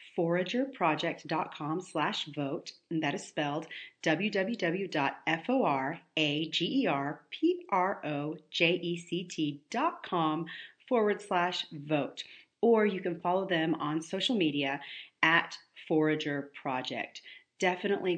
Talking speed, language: 75 wpm, English